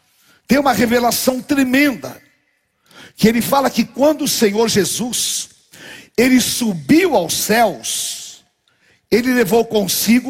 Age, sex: 60-79, male